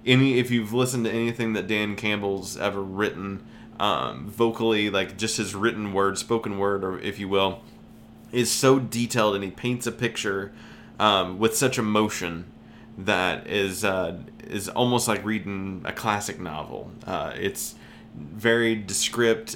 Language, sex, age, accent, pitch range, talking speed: English, male, 20-39, American, 95-115 Hz, 155 wpm